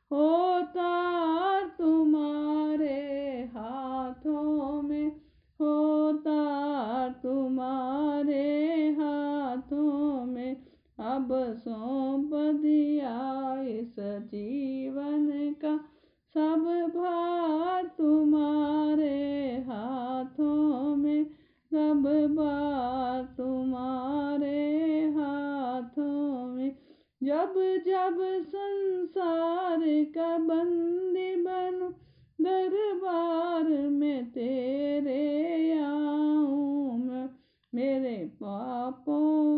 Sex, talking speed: female, 55 wpm